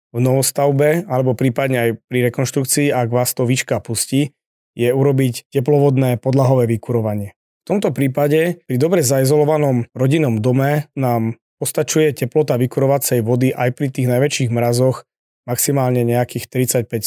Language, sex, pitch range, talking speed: Slovak, male, 125-150 Hz, 135 wpm